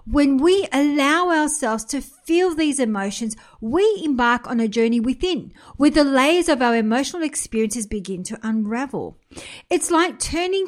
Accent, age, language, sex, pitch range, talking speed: Australian, 50-69, English, female, 220-290 Hz, 150 wpm